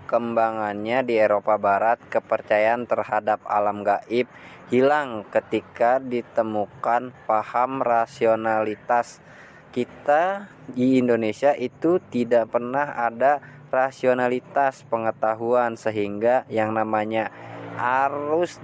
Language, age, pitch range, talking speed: English, 20-39, 100-125 Hz, 85 wpm